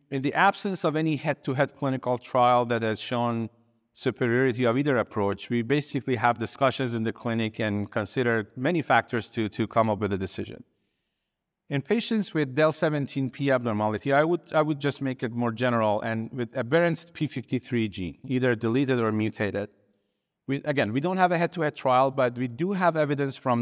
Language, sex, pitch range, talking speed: English, male, 110-140 Hz, 175 wpm